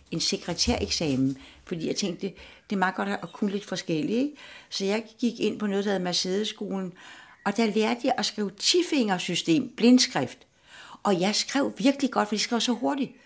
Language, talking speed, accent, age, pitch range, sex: Danish, 185 wpm, native, 60-79, 155-220 Hz, female